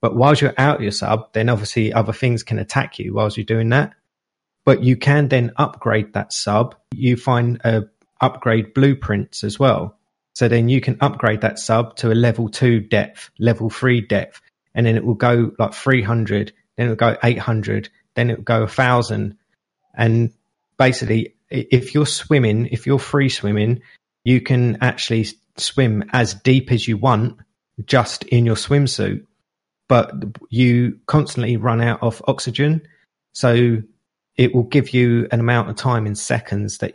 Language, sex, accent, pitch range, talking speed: English, male, British, 110-130 Hz, 165 wpm